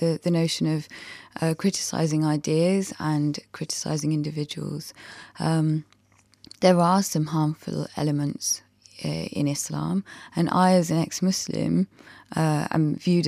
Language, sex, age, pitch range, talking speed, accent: English, female, 20-39, 150-175 Hz, 115 wpm, British